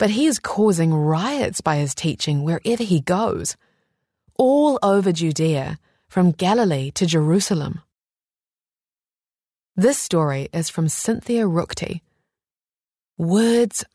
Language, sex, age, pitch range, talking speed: English, female, 20-39, 155-195 Hz, 110 wpm